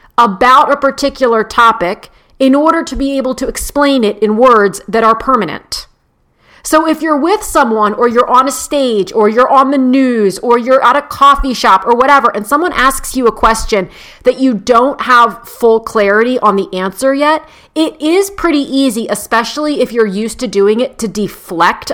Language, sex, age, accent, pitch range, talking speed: English, female, 40-59, American, 215-275 Hz, 190 wpm